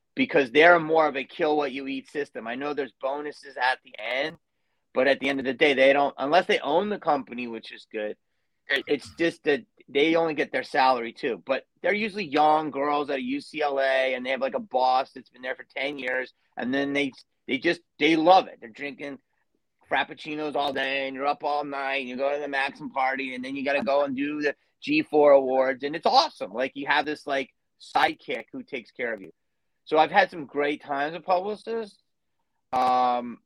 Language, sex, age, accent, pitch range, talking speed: English, male, 30-49, American, 130-155 Hz, 215 wpm